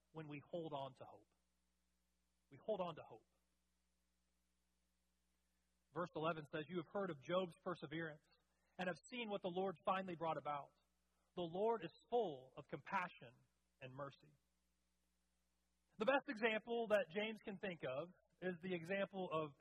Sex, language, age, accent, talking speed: male, English, 40-59, American, 150 wpm